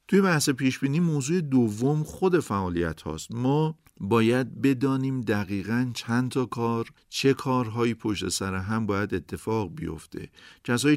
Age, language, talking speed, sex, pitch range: 50-69, Persian, 130 wpm, male, 105-130 Hz